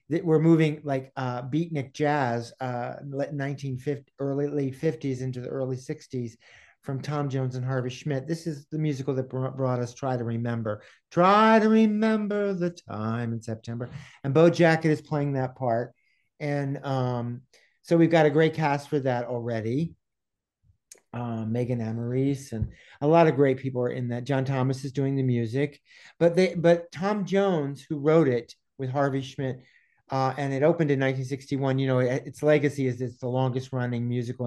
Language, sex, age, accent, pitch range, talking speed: English, male, 50-69, American, 125-160 Hz, 180 wpm